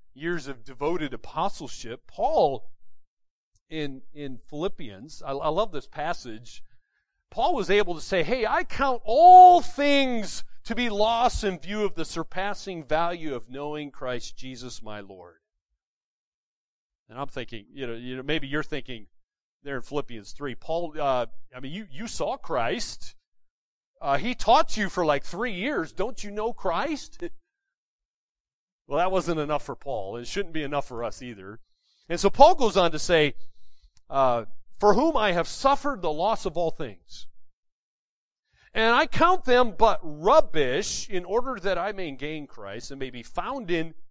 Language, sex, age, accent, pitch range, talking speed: English, male, 40-59, American, 135-220 Hz, 165 wpm